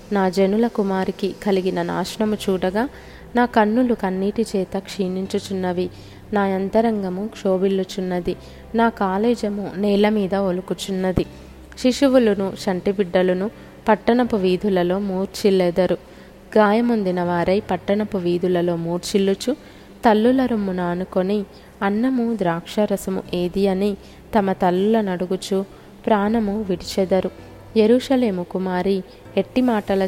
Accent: native